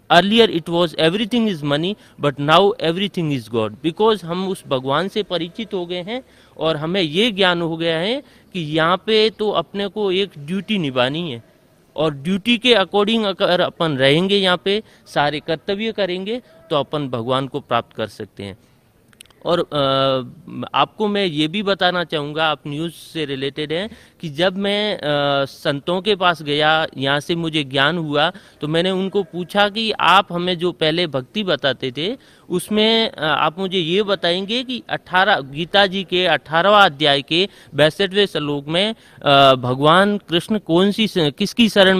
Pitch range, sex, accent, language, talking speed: 150-200 Hz, male, native, Hindi, 165 wpm